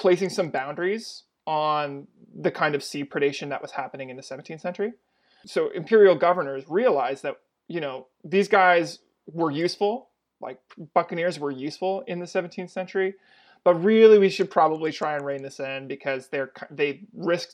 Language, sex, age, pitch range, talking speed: English, male, 30-49, 145-190 Hz, 170 wpm